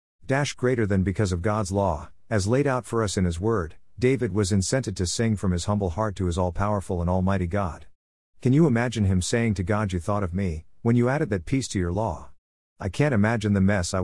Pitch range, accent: 90-115 Hz, American